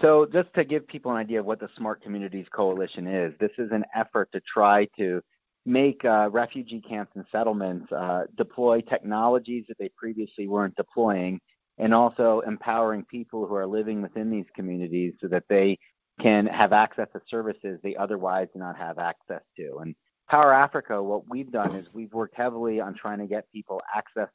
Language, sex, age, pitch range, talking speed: English, male, 30-49, 100-115 Hz, 185 wpm